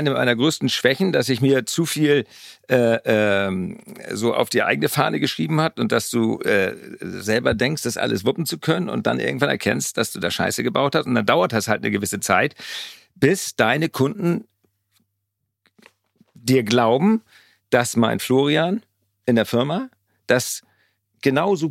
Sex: male